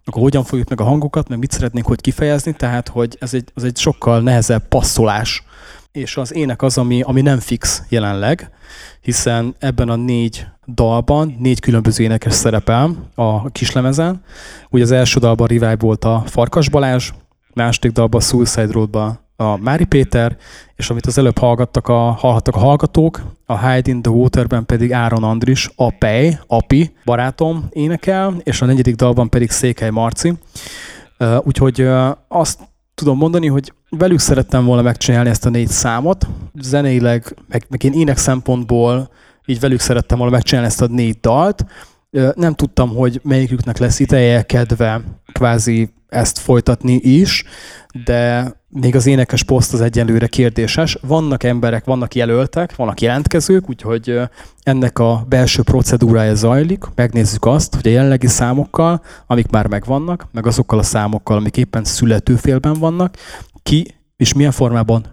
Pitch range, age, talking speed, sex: 115-135 Hz, 20-39, 150 wpm, male